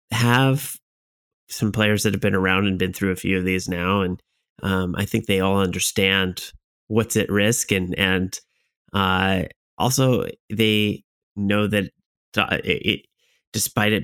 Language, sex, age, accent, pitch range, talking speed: English, male, 30-49, American, 95-105 Hz, 145 wpm